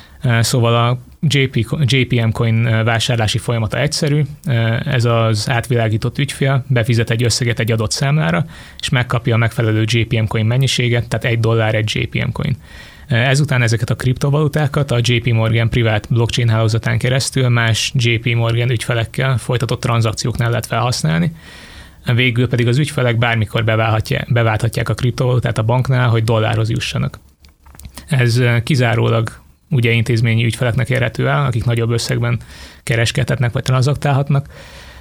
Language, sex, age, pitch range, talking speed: Hungarian, male, 20-39, 115-130 Hz, 130 wpm